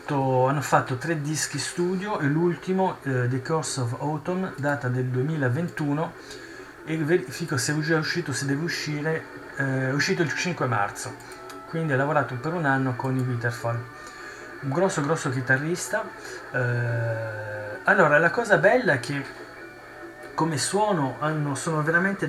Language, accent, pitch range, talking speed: Italian, native, 130-155 Hz, 145 wpm